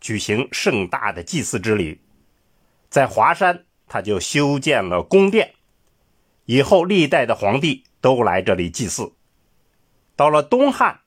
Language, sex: Chinese, male